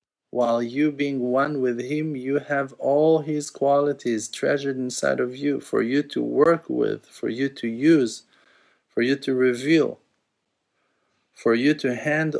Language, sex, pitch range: English, male, 110-140 Hz